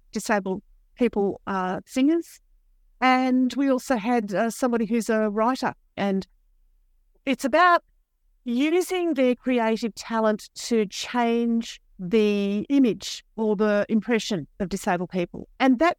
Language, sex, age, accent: English, female, 50-69, Australian